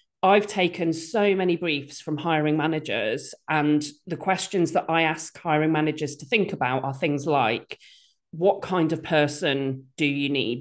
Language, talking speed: English, 165 wpm